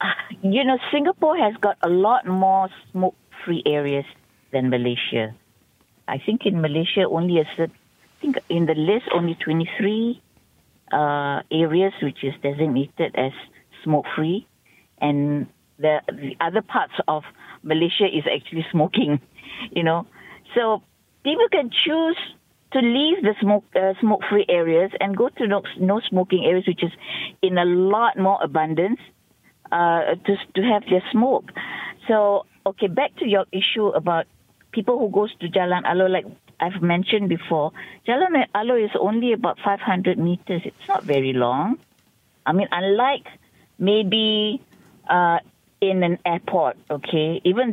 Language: English